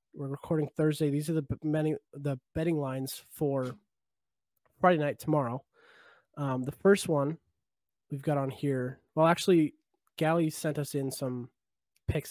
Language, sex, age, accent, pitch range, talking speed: English, male, 20-39, American, 130-155 Hz, 145 wpm